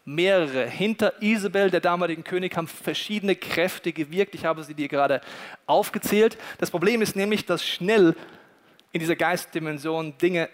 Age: 40-59